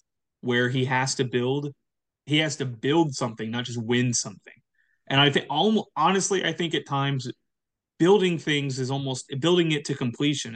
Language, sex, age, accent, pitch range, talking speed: English, male, 20-39, American, 125-165 Hz, 170 wpm